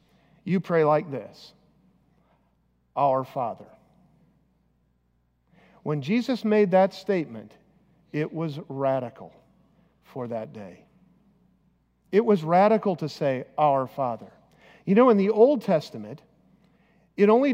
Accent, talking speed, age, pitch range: American, 110 wpm, 50-69, 165-225 Hz